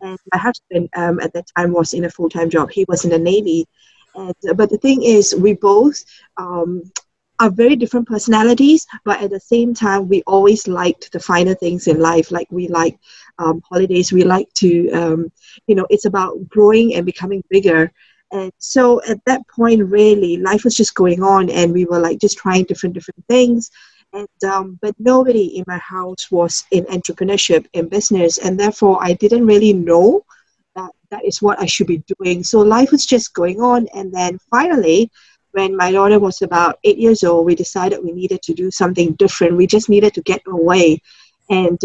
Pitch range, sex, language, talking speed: 175-210 Hz, female, English, 195 wpm